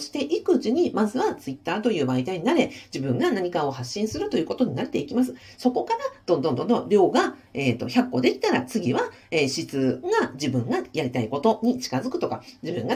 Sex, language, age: female, Japanese, 50-69